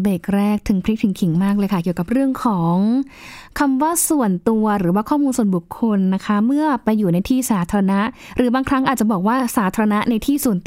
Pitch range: 195-245 Hz